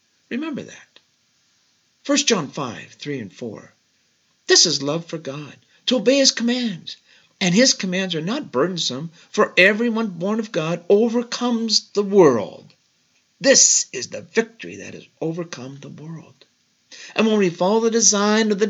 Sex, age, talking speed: male, 50-69, 155 wpm